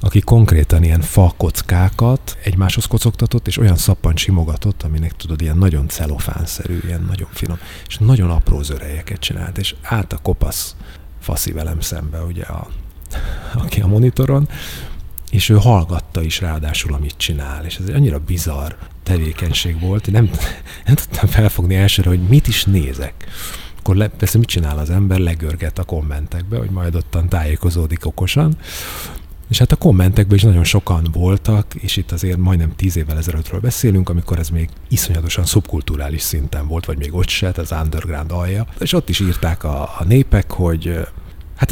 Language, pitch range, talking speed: Hungarian, 80-100 Hz, 165 wpm